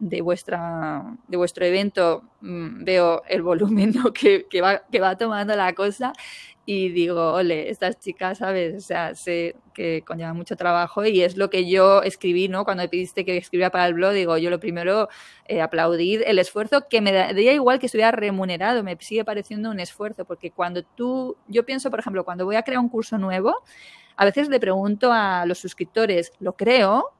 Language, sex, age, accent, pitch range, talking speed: Spanish, female, 20-39, Spanish, 180-250 Hz, 195 wpm